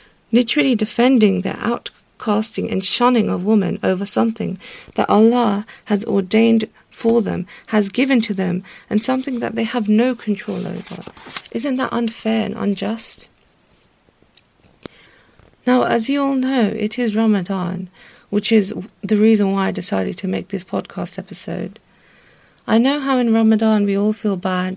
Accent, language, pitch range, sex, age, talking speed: British, English, 200-235 Hz, female, 40-59, 150 wpm